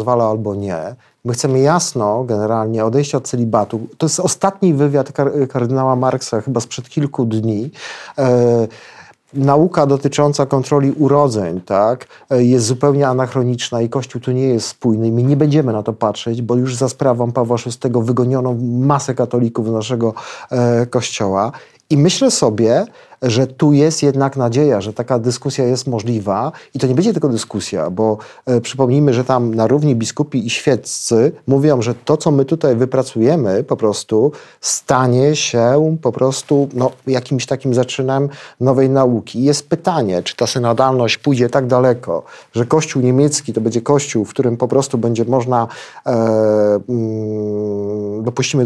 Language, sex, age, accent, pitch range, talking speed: Polish, male, 40-59, native, 115-140 Hz, 150 wpm